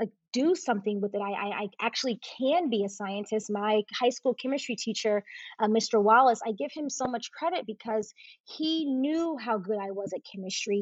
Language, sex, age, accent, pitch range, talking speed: English, female, 20-39, American, 205-255 Hz, 190 wpm